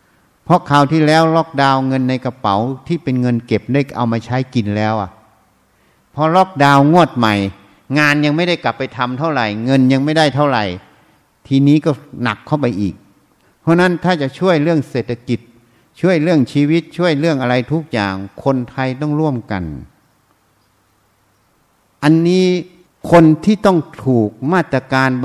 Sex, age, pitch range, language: male, 60-79, 110-150 Hz, Thai